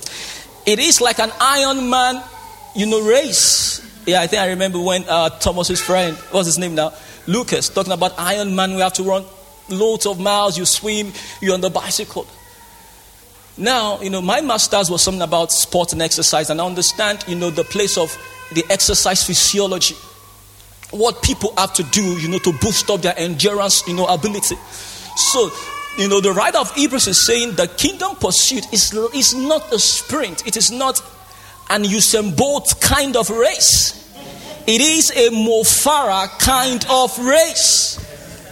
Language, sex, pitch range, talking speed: English, male, 180-245 Hz, 170 wpm